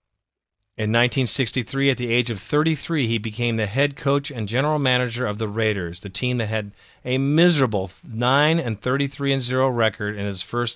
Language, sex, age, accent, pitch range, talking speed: English, male, 40-59, American, 110-140 Hz, 175 wpm